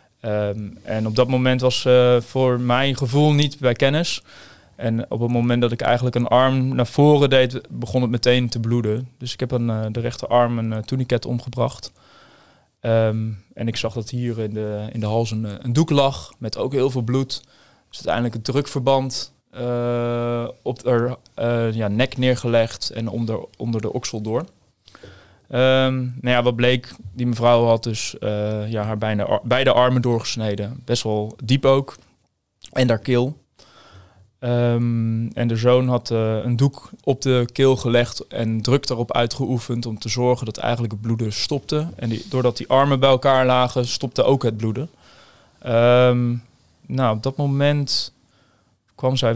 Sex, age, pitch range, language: male, 20-39, 115-130 Hz, Dutch